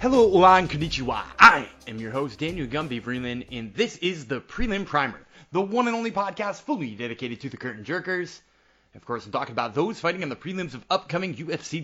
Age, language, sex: 20-39, English, male